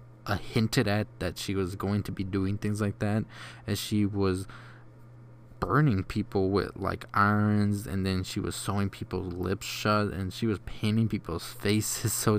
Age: 20-39